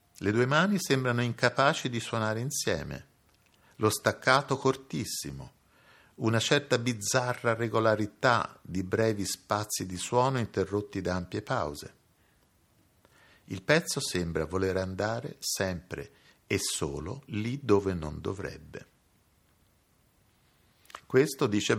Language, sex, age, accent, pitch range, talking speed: Italian, male, 50-69, native, 95-135 Hz, 105 wpm